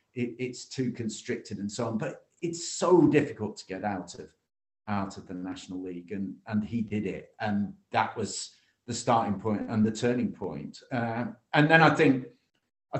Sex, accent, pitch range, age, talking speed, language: male, British, 105-135 Hz, 50-69, 185 wpm, English